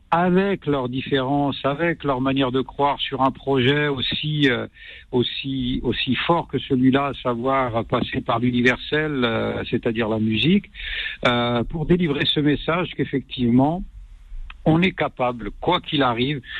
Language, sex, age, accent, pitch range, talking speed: French, male, 60-79, French, 125-150 Hz, 140 wpm